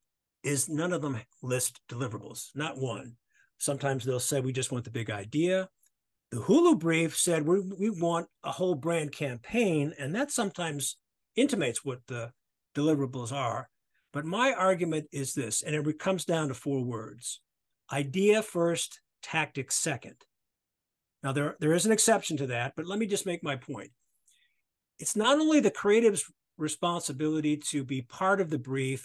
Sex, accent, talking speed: male, American, 165 wpm